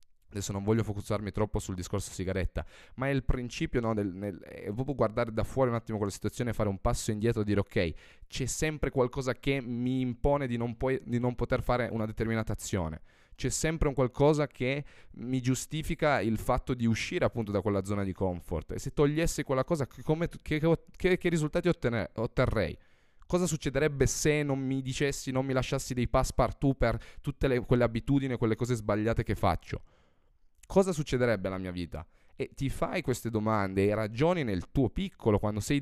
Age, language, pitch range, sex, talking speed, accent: 20-39, Italian, 100-135 Hz, male, 200 wpm, native